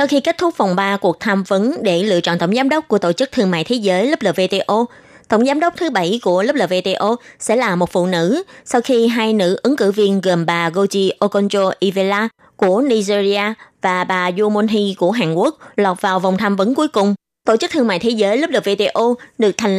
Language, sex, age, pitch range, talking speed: Vietnamese, female, 20-39, 190-255 Hz, 225 wpm